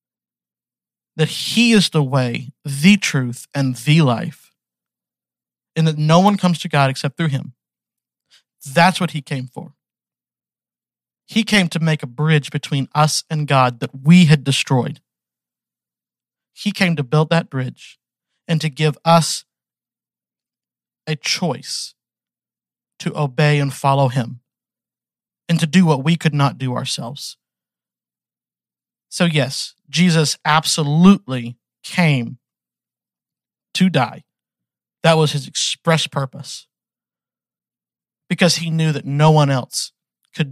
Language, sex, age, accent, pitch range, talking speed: English, male, 50-69, American, 130-165 Hz, 125 wpm